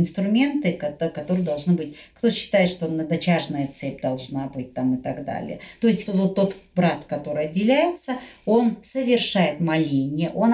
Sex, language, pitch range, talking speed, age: female, Russian, 155-190 Hz, 150 wpm, 50-69